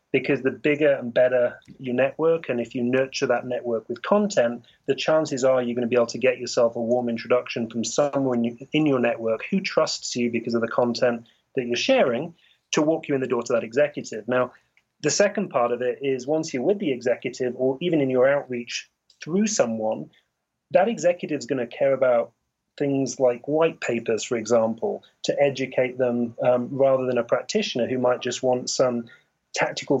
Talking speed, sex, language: 200 wpm, male, English